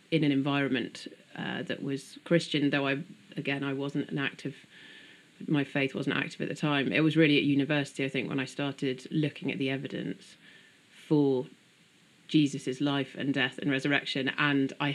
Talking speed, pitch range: 175 wpm, 135-150 Hz